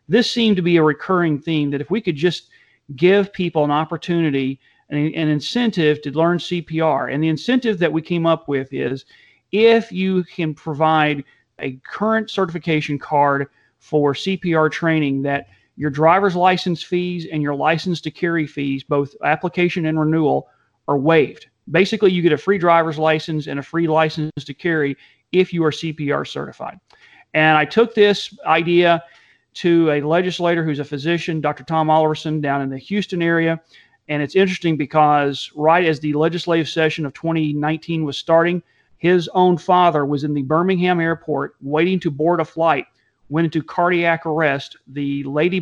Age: 40-59